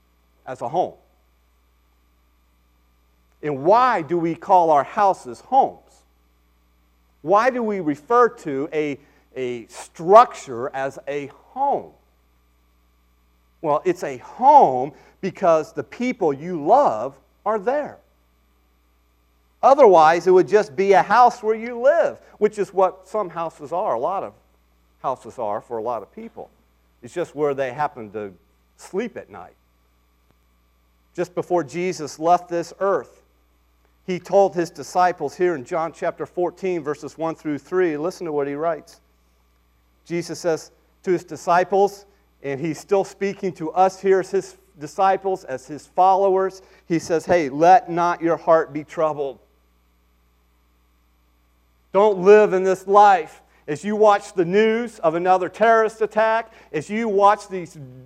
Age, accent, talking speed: 40-59, American, 140 wpm